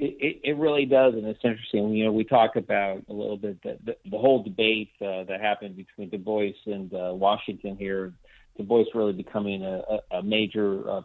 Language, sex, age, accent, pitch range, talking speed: English, male, 40-59, American, 100-115 Hz, 205 wpm